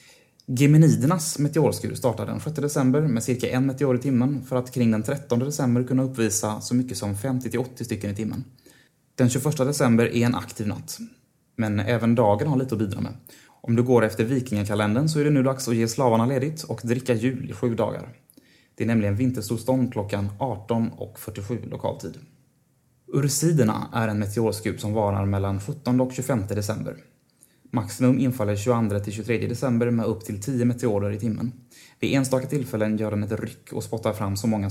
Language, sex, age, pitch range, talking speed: Swedish, male, 20-39, 110-130 Hz, 180 wpm